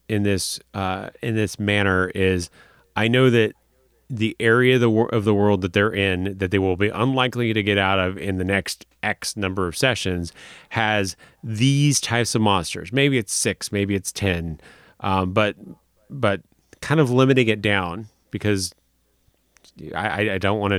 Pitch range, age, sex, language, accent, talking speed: 95-115 Hz, 30-49, male, English, American, 170 wpm